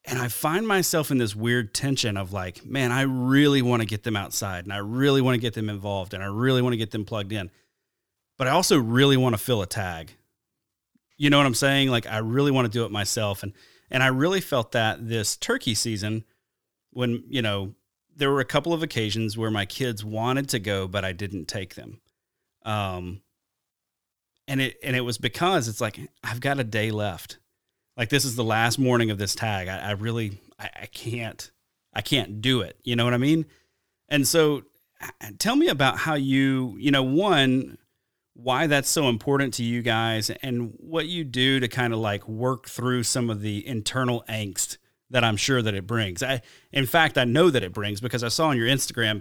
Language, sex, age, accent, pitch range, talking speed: English, male, 30-49, American, 105-135 Hz, 215 wpm